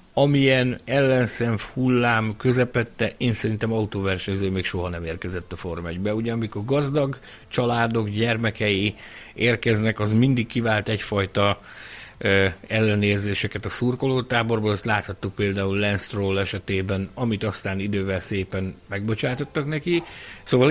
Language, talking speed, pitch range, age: Hungarian, 115 wpm, 105-125 Hz, 60-79